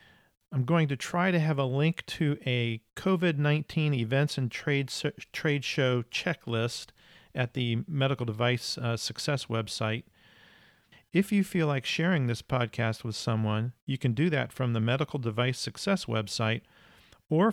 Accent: American